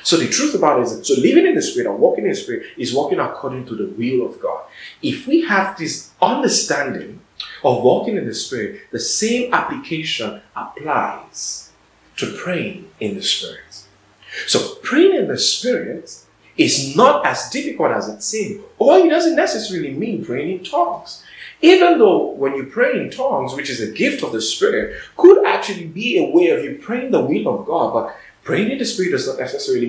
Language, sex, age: English, male, 30-49